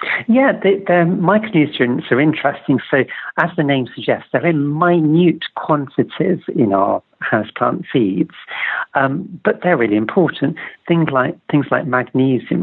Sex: male